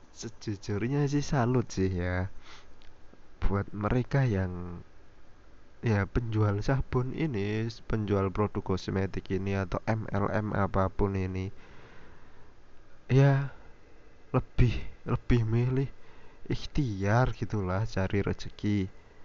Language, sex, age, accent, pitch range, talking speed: Indonesian, male, 20-39, native, 100-130 Hz, 85 wpm